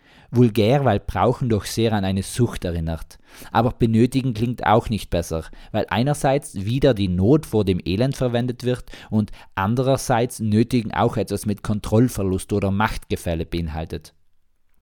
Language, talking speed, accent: German, 140 wpm, German